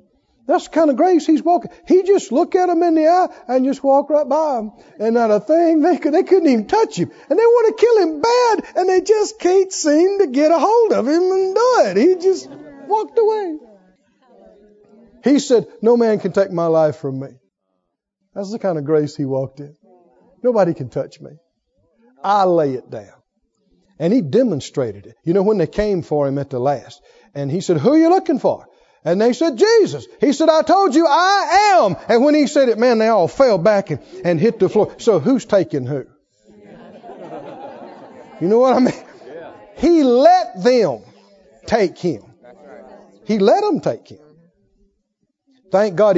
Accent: American